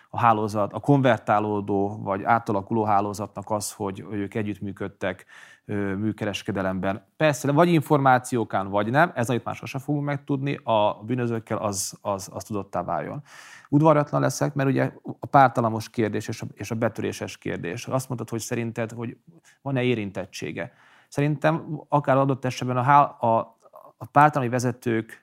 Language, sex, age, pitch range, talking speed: Hungarian, male, 30-49, 105-125 Hz, 145 wpm